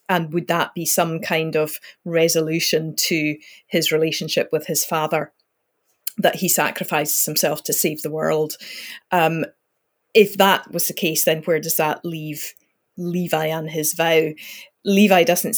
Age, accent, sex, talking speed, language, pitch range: 30-49, British, female, 150 wpm, English, 160-185 Hz